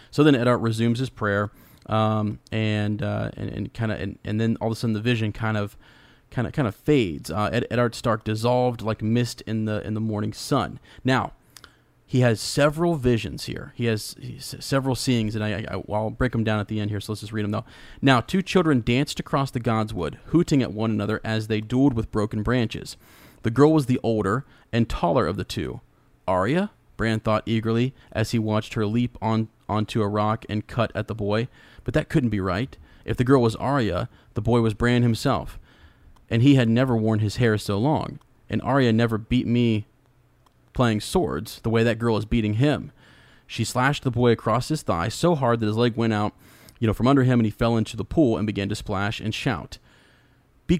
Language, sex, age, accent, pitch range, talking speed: English, male, 30-49, American, 110-125 Hz, 220 wpm